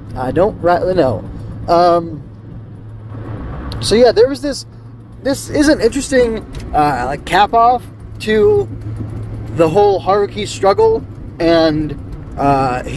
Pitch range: 120-170 Hz